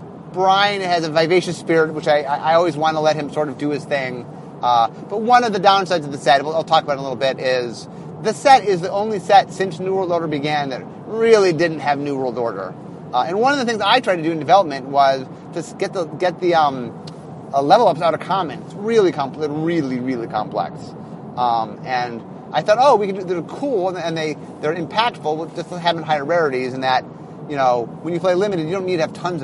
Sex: male